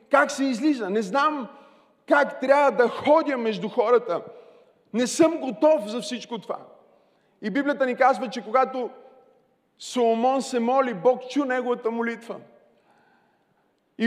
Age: 30-49